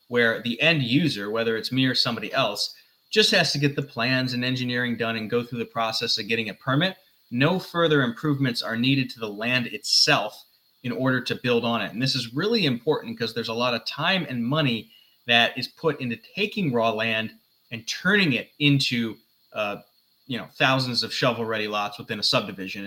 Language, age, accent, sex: English, 20-39, American, male